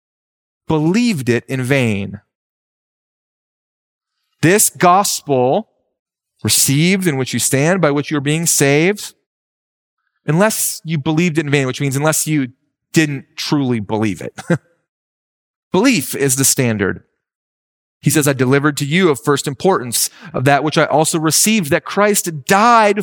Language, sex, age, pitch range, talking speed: English, male, 30-49, 140-190 Hz, 135 wpm